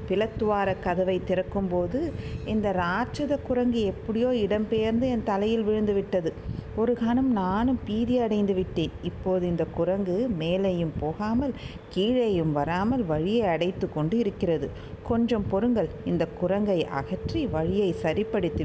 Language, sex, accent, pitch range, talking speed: Tamil, female, native, 150-195 Hz, 115 wpm